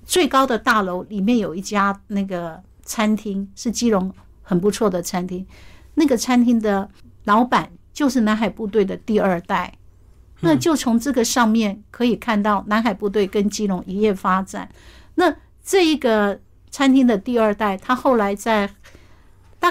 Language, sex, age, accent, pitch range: Chinese, female, 60-79, American, 195-245 Hz